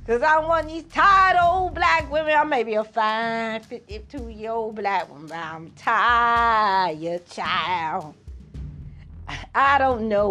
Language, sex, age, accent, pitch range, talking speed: English, female, 30-49, American, 215-360 Hz, 135 wpm